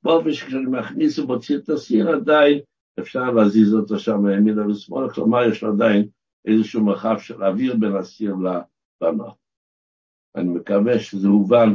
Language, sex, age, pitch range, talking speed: Hebrew, male, 60-79, 105-155 Hz, 140 wpm